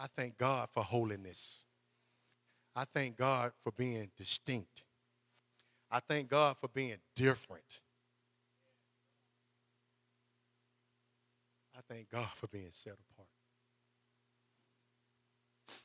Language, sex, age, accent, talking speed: English, male, 50-69, American, 90 wpm